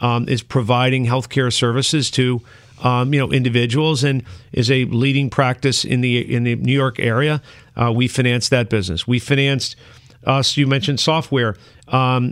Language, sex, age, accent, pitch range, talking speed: English, male, 40-59, American, 120-140 Hz, 175 wpm